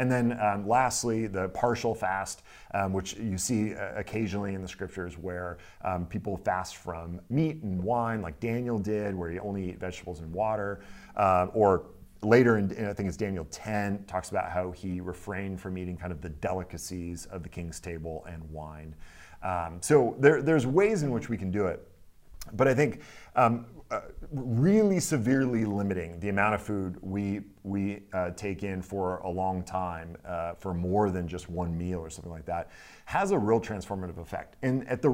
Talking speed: 190 wpm